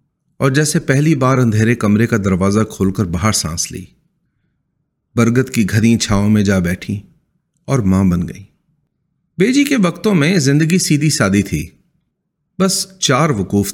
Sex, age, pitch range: male, 40-59, 100-150 Hz